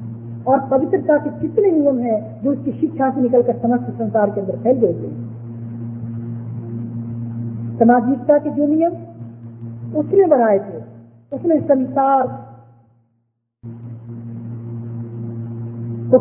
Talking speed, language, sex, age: 105 wpm, Hindi, female, 40-59